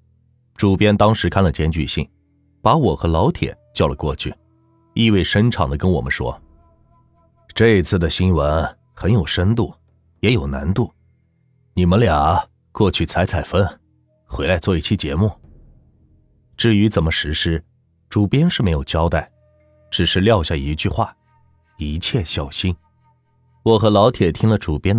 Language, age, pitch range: Chinese, 30-49, 85-120 Hz